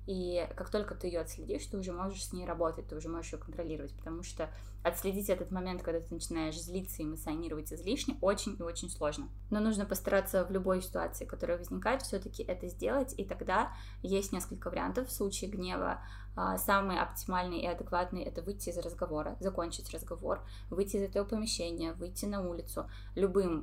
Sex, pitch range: female, 165-195 Hz